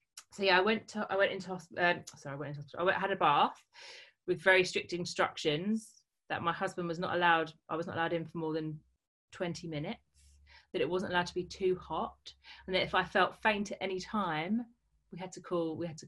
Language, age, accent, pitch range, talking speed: English, 30-49, British, 155-190 Hz, 245 wpm